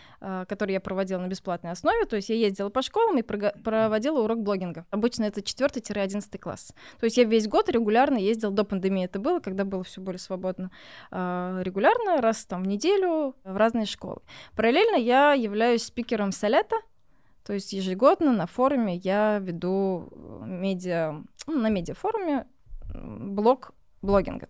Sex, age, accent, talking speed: female, 20-39, native, 160 wpm